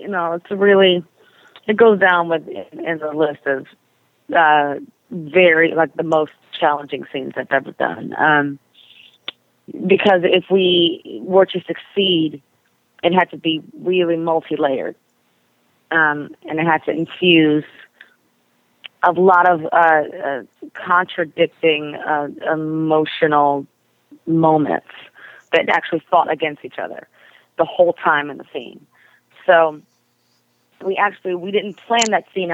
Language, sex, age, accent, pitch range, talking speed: English, female, 30-49, American, 145-175 Hz, 125 wpm